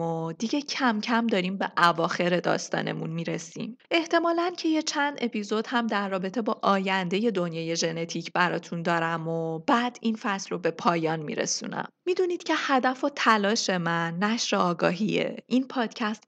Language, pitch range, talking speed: Persian, 175-240 Hz, 150 wpm